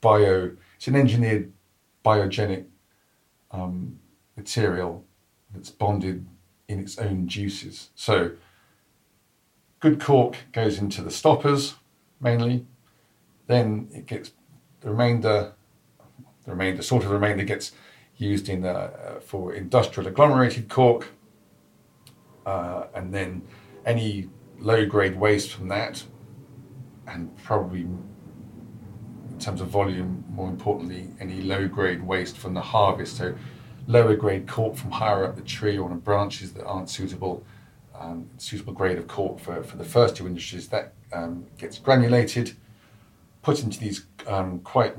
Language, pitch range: English, 95-120 Hz